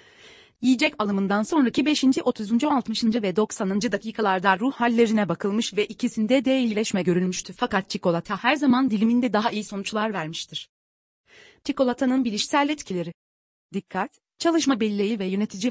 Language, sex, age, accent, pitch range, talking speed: Turkish, female, 30-49, native, 195-255 Hz, 130 wpm